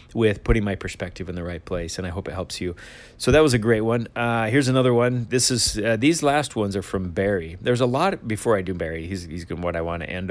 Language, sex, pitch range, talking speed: English, male, 100-120 Hz, 280 wpm